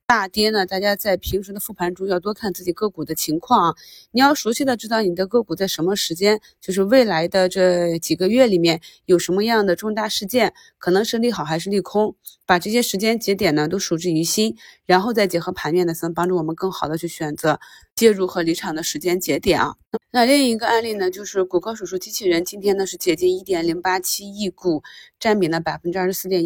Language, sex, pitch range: Chinese, female, 170-210 Hz